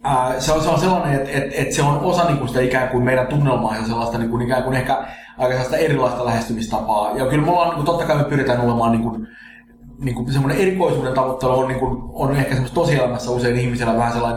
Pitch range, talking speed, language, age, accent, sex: 120-140 Hz, 210 wpm, Finnish, 20-39, native, male